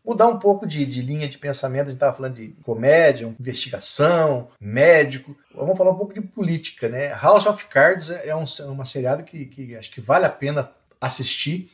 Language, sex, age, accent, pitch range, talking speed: Portuguese, male, 50-69, Brazilian, 135-175 Hz, 195 wpm